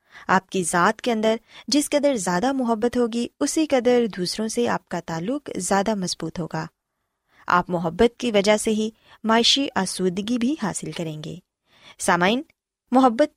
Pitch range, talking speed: 180-255 Hz, 155 wpm